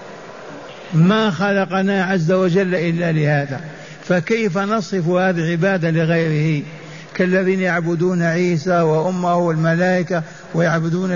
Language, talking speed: Arabic, 90 wpm